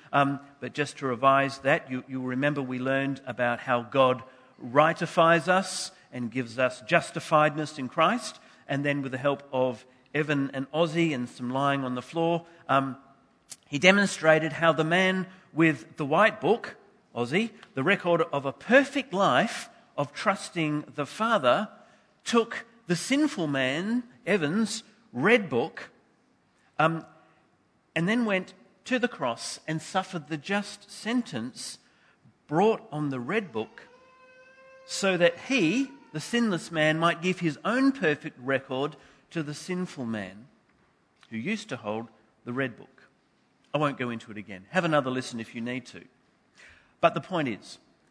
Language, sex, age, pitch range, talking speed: English, male, 40-59, 130-185 Hz, 150 wpm